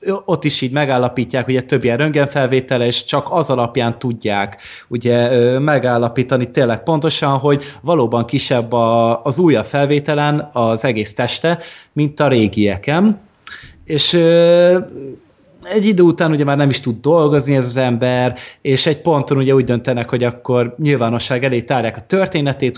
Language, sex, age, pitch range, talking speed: Hungarian, male, 20-39, 120-145 Hz, 150 wpm